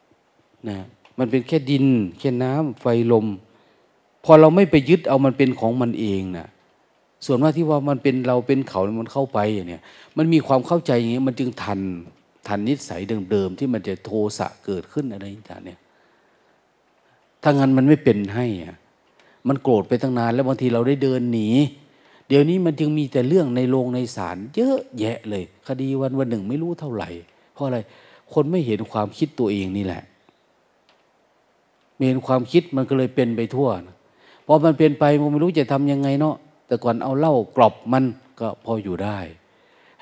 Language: Thai